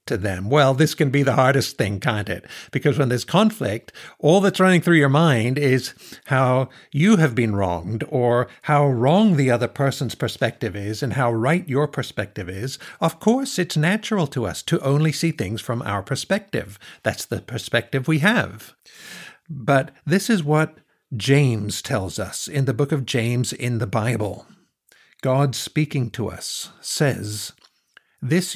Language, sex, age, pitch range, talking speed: English, male, 60-79, 115-155 Hz, 170 wpm